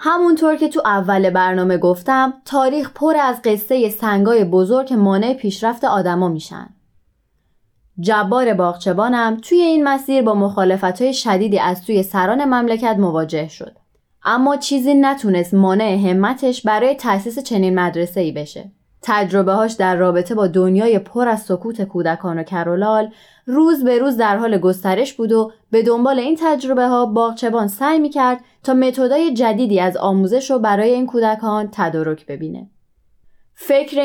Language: Persian